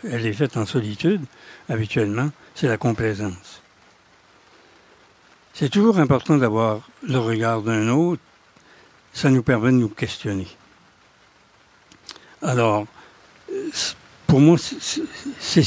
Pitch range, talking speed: 105-135 Hz, 105 wpm